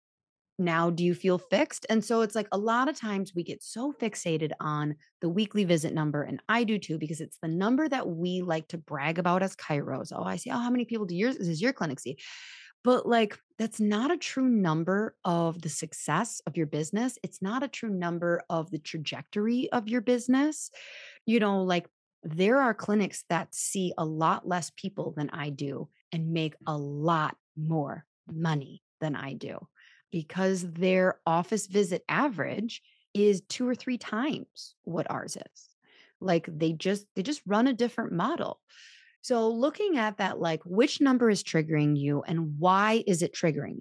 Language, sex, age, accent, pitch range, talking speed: English, female, 30-49, American, 165-225 Hz, 190 wpm